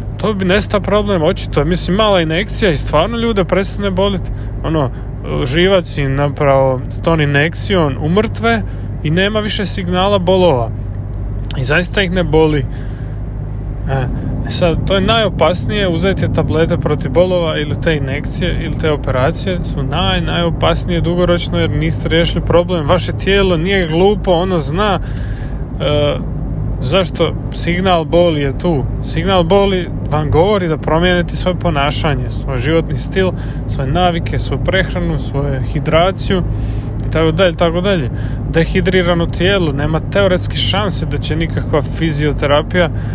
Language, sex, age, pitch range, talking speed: Croatian, male, 30-49, 120-170 Hz, 135 wpm